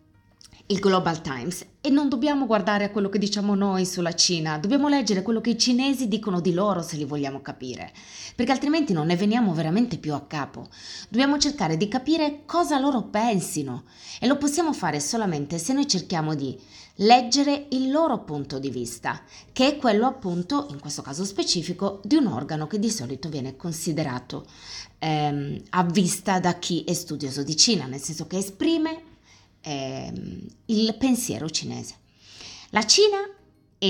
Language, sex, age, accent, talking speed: Italian, female, 20-39, native, 160 wpm